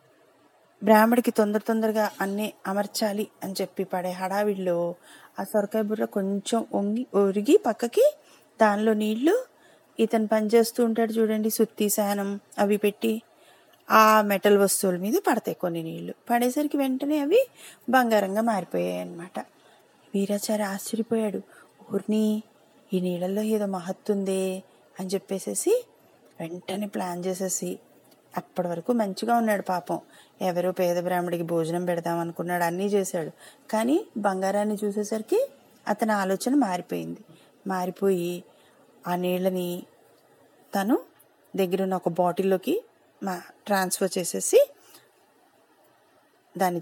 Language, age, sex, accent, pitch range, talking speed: Telugu, 30-49, female, native, 185-230 Hz, 105 wpm